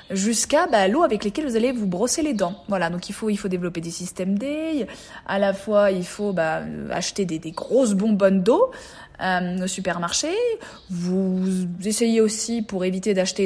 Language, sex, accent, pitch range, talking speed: French, female, French, 180-235 Hz, 185 wpm